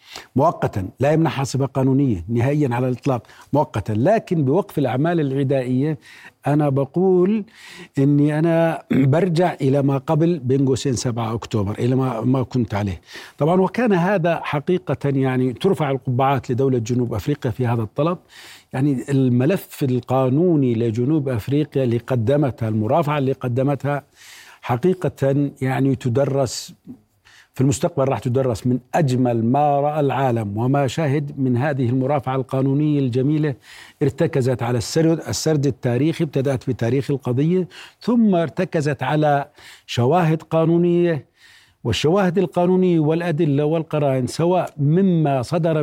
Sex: male